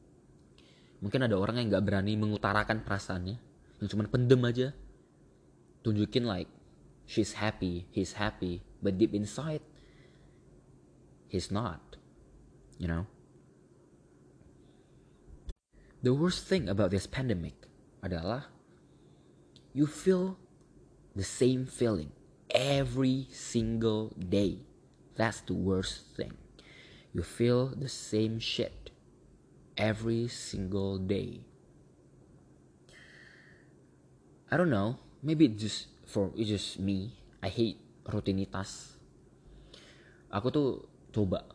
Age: 20-39